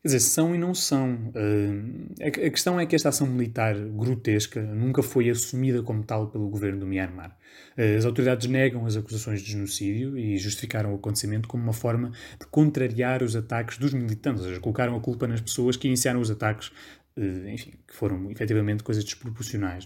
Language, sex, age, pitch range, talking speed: Portuguese, male, 20-39, 110-135 Hz, 195 wpm